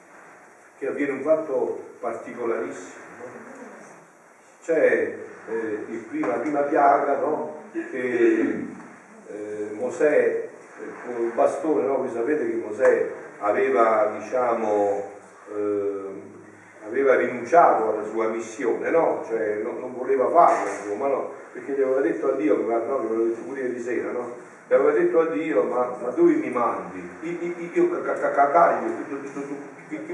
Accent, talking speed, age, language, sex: native, 130 wpm, 50-69, Italian, male